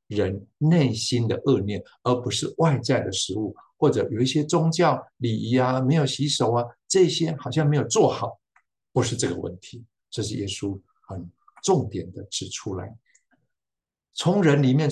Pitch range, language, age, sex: 105-135 Hz, Chinese, 50-69, male